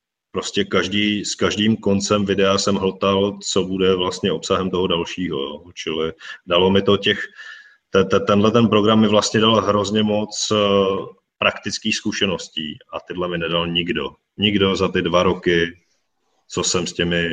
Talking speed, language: 145 wpm, Czech